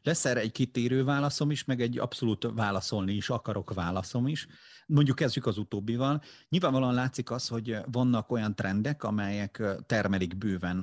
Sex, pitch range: male, 95-120 Hz